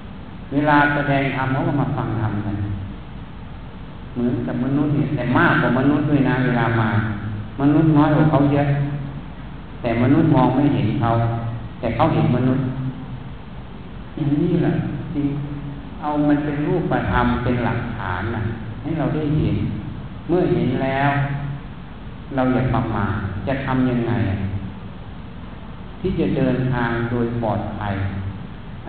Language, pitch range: Thai, 110-140 Hz